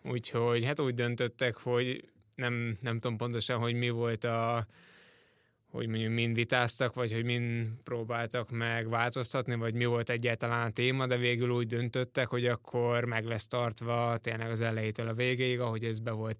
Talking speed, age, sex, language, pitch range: 170 wpm, 20-39, male, Hungarian, 115-125 Hz